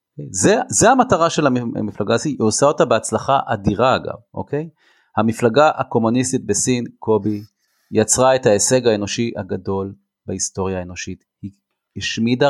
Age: 30-49